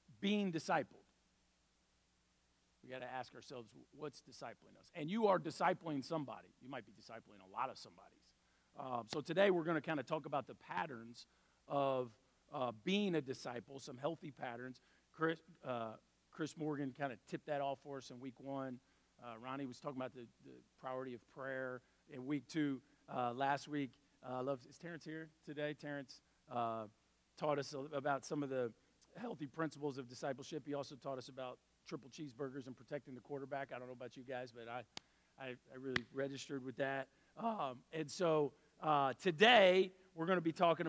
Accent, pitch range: American, 125-160 Hz